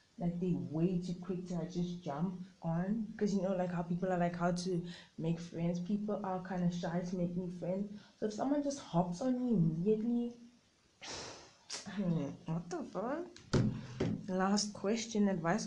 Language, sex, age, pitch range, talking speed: English, female, 20-39, 175-210 Hz, 165 wpm